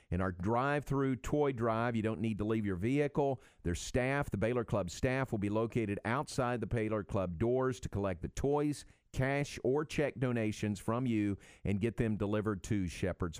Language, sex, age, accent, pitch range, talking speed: English, male, 50-69, American, 100-125 Hz, 195 wpm